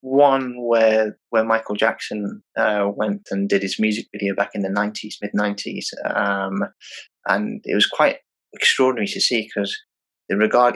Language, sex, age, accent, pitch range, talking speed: English, male, 20-39, British, 100-110 Hz, 160 wpm